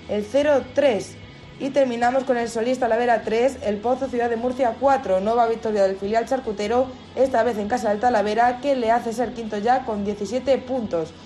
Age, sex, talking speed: 20-39, female, 185 wpm